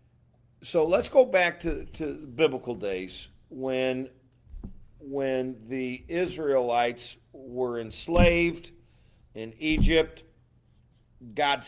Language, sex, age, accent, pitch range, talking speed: English, male, 50-69, American, 110-140 Hz, 85 wpm